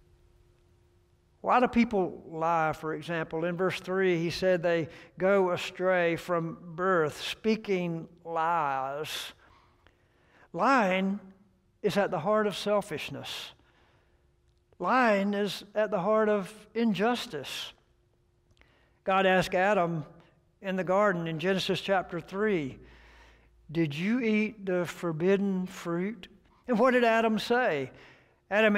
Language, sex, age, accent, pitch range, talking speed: English, male, 60-79, American, 155-205 Hz, 115 wpm